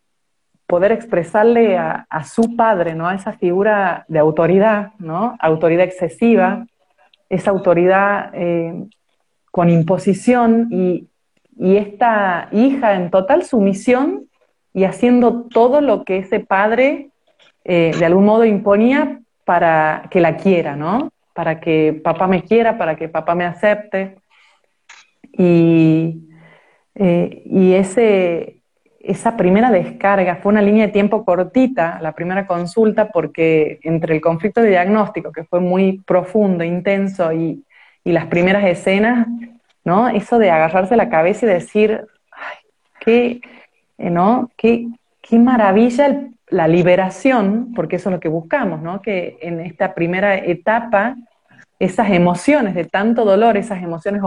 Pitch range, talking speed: 175-230 Hz, 135 wpm